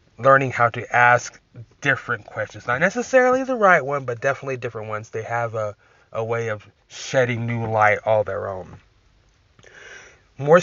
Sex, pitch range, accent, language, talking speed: male, 110-130 Hz, American, English, 160 wpm